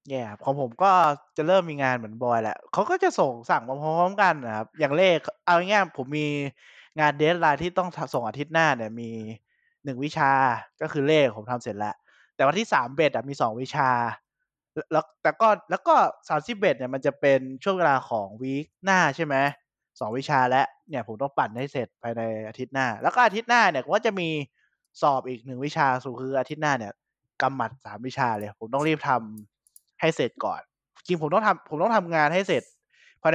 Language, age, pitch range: Thai, 20-39, 120-160 Hz